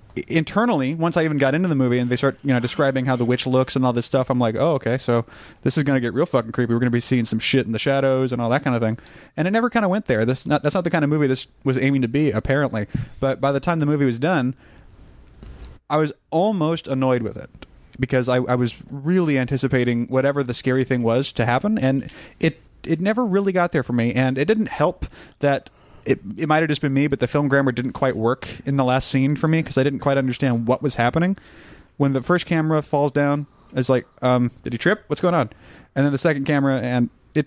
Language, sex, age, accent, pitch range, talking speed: English, male, 30-49, American, 125-155 Hz, 260 wpm